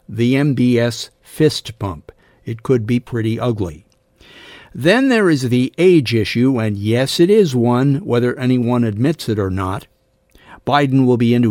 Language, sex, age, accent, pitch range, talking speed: English, male, 60-79, American, 110-140 Hz, 155 wpm